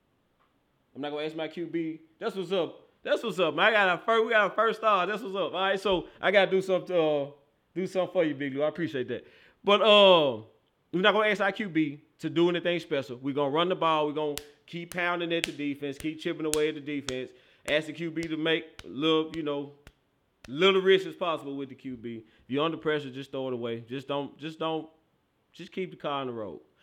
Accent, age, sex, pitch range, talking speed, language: American, 30-49, male, 140-180 Hz, 240 wpm, English